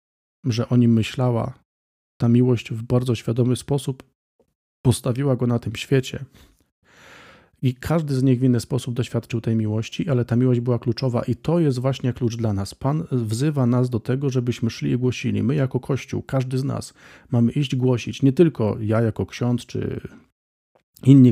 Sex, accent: male, native